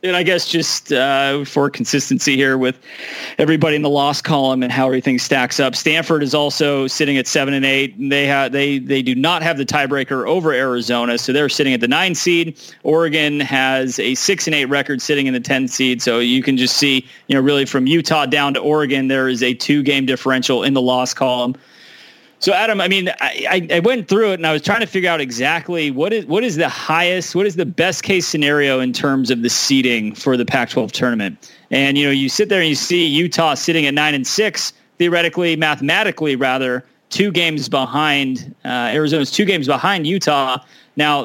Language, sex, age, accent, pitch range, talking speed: English, male, 30-49, American, 135-165 Hz, 215 wpm